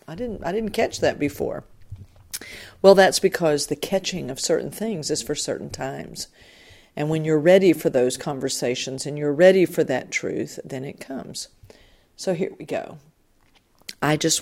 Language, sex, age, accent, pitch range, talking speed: English, female, 50-69, American, 135-180 Hz, 170 wpm